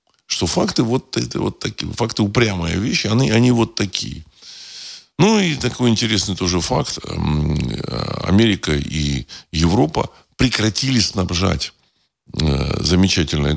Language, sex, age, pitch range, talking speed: Russian, male, 50-69, 75-110 Hz, 110 wpm